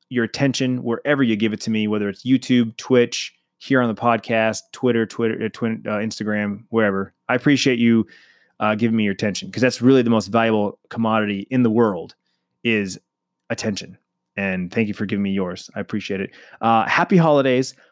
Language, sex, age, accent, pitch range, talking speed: English, male, 20-39, American, 105-130 Hz, 190 wpm